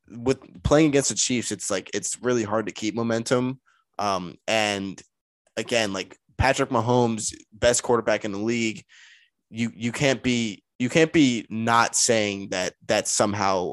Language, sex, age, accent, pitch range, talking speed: English, male, 20-39, American, 105-125 Hz, 155 wpm